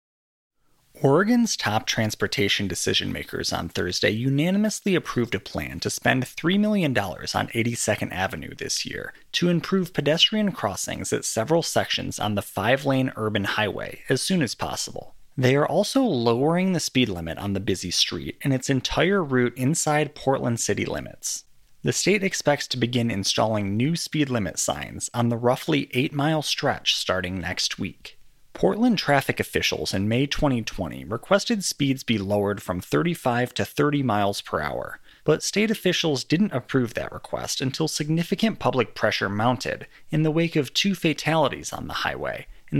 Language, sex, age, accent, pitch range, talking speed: English, male, 30-49, American, 110-160 Hz, 155 wpm